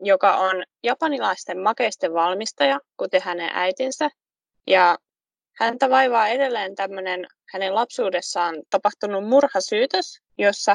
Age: 20-39